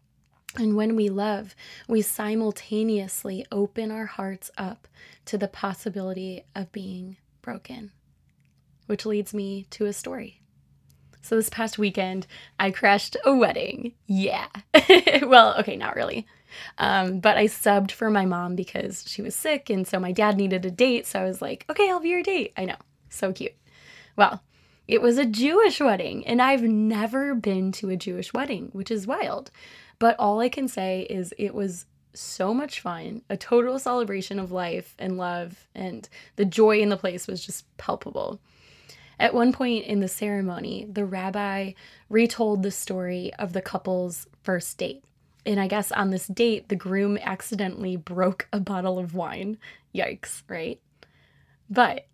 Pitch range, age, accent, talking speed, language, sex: 190-225 Hz, 20-39, American, 165 wpm, English, female